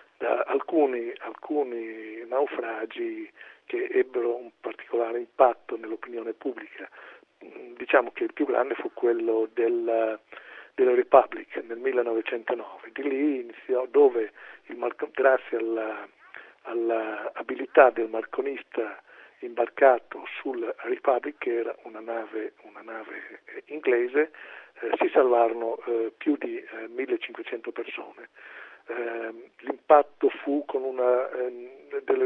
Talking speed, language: 110 wpm, Italian